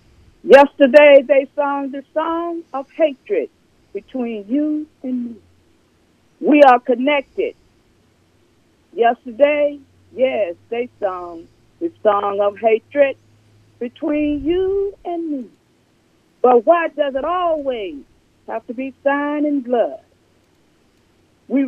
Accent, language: American, English